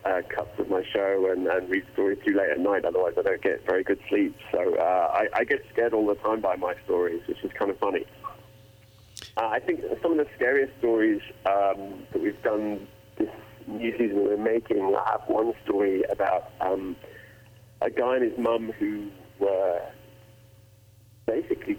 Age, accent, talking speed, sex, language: 40-59, British, 190 wpm, male, English